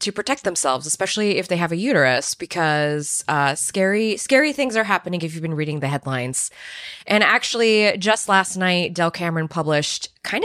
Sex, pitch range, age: female, 155-220 Hz, 20-39